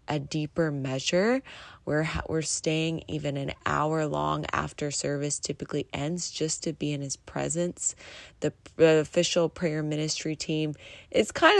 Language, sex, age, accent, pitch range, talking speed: English, female, 20-39, American, 140-195 Hz, 145 wpm